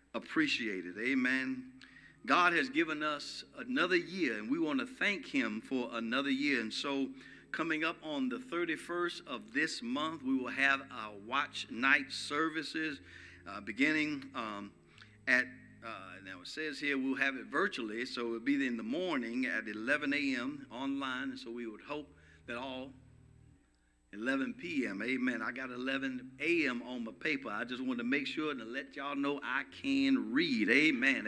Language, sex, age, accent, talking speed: English, male, 60-79, American, 170 wpm